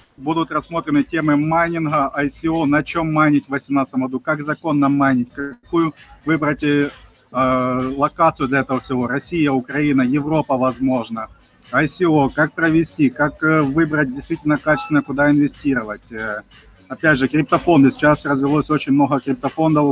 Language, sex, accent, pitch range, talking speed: Russian, male, native, 135-160 Hz, 125 wpm